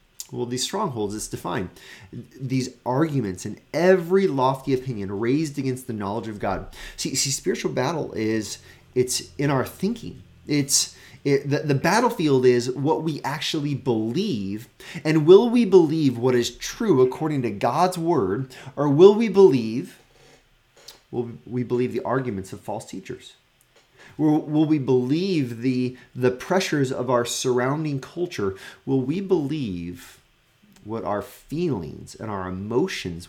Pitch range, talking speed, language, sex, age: 105-145 Hz, 140 wpm, English, male, 30-49